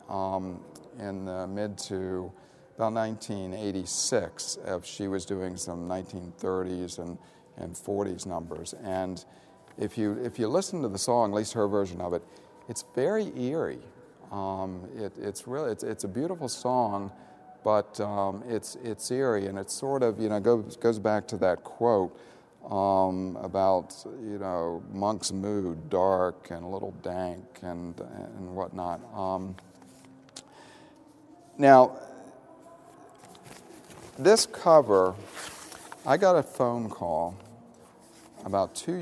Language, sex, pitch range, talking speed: English, male, 95-120 Hz, 130 wpm